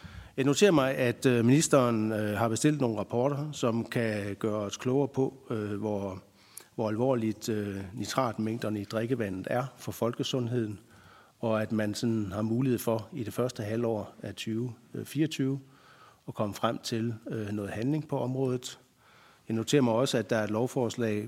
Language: Danish